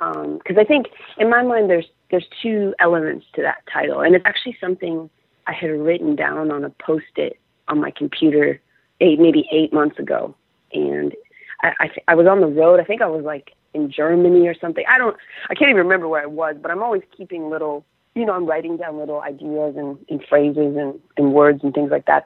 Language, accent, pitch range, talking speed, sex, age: English, American, 155-185 Hz, 220 wpm, female, 30-49